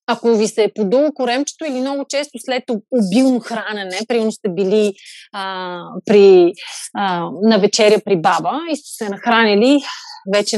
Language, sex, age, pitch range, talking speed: Bulgarian, female, 30-49, 205-275 Hz, 145 wpm